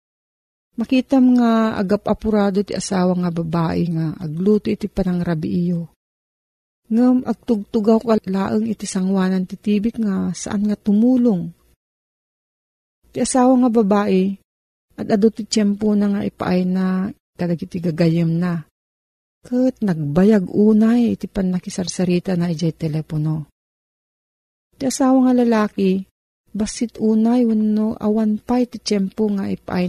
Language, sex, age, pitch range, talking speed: Filipino, female, 40-59, 180-225 Hz, 120 wpm